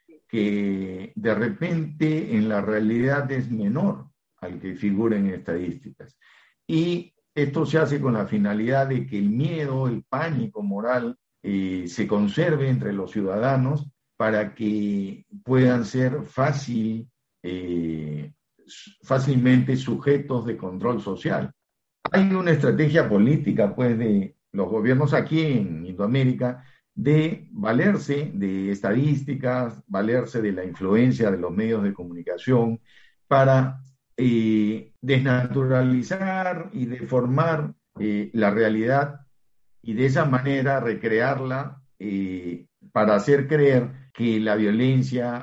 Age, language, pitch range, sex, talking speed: 50-69, Spanish, 105-140 Hz, male, 115 wpm